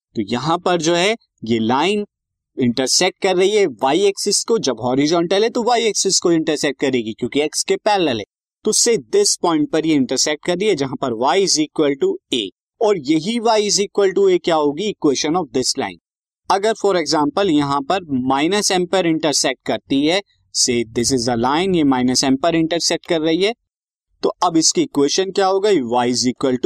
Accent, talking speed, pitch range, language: native, 190 wpm, 130-200 Hz, Hindi